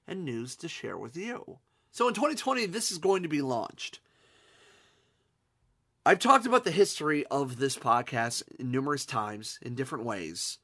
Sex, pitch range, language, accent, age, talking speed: male, 150-215 Hz, English, American, 30-49, 160 wpm